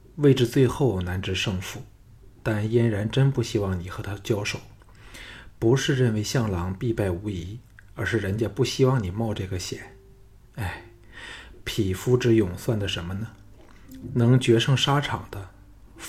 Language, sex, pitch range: Chinese, male, 100-115 Hz